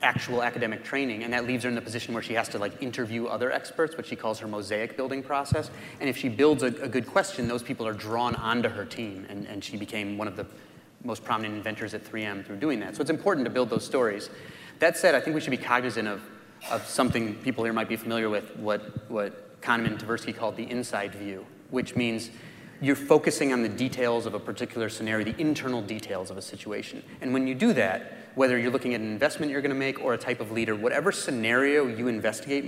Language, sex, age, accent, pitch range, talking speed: English, male, 30-49, American, 110-130 Hz, 235 wpm